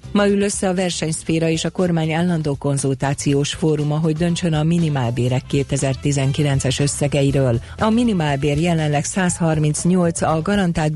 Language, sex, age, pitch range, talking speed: Hungarian, female, 40-59, 140-170 Hz, 125 wpm